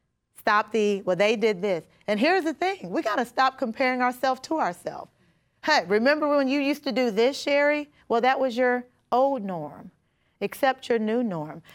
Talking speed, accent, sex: 190 wpm, American, female